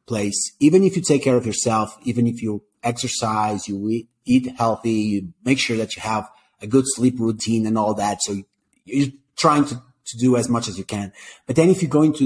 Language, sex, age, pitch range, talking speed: English, male, 30-49, 110-145 Hz, 215 wpm